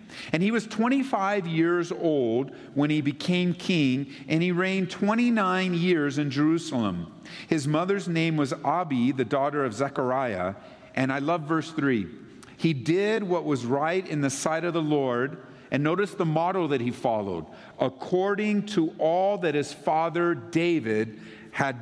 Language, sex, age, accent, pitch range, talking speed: English, male, 50-69, American, 140-200 Hz, 155 wpm